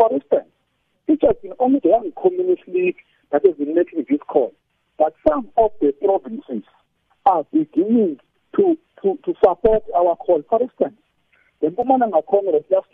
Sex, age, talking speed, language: male, 50-69, 165 wpm, English